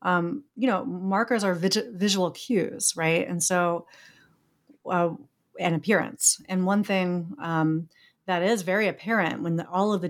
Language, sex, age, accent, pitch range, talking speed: English, female, 30-49, American, 160-185 Hz, 150 wpm